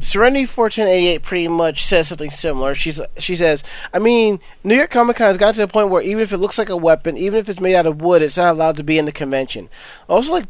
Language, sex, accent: English, male, American